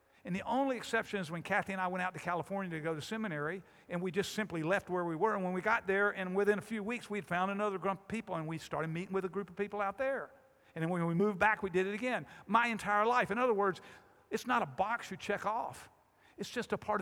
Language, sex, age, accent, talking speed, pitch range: English, male, 50-69, American, 280 wpm, 150-195 Hz